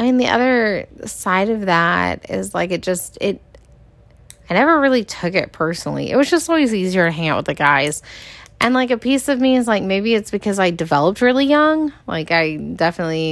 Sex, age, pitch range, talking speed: female, 20-39, 160-215 Hz, 210 wpm